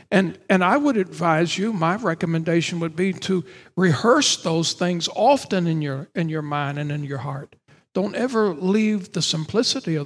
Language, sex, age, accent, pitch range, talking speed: English, male, 60-79, American, 155-185 Hz, 180 wpm